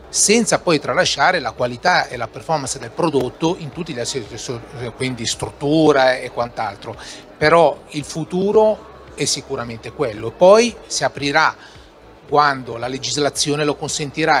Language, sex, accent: Italian, male, native